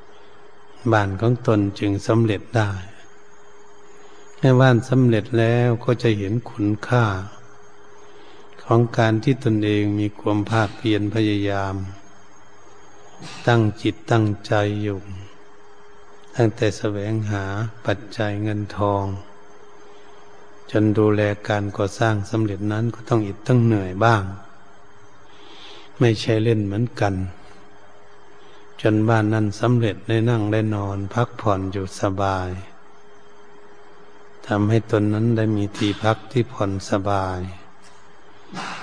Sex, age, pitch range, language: male, 60-79, 100-110 Hz, Thai